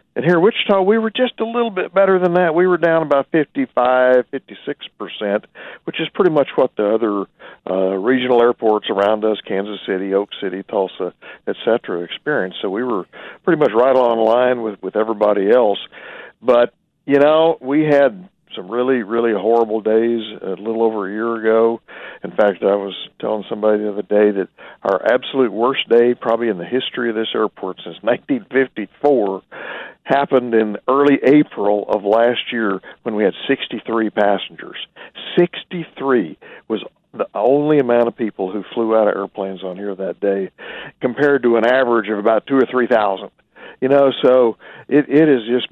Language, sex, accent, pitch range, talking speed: English, male, American, 105-140 Hz, 185 wpm